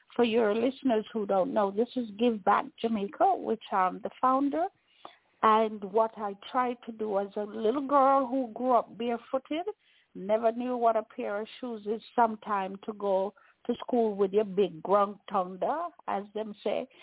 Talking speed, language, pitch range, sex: 175 wpm, English, 210-275 Hz, female